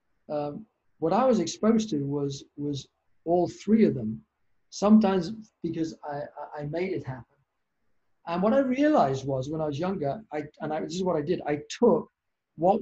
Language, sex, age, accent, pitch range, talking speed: English, male, 50-69, British, 150-185 Hz, 185 wpm